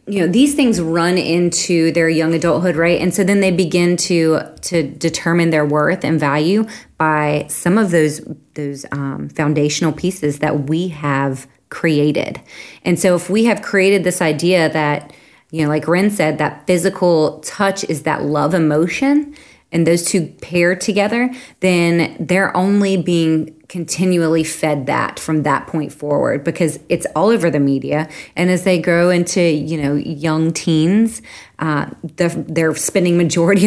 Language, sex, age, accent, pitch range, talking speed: English, female, 20-39, American, 155-185 Hz, 160 wpm